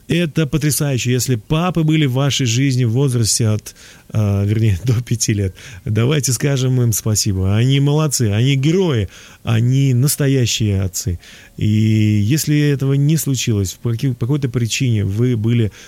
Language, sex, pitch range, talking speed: Russian, male, 105-135 Hz, 135 wpm